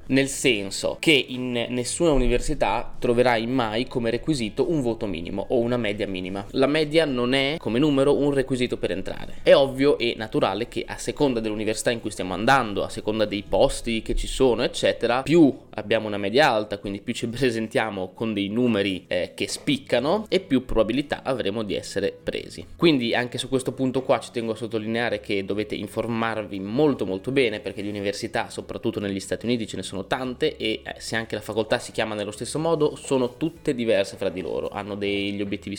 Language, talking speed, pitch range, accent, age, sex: Italian, 195 wpm, 105-130 Hz, native, 20-39, male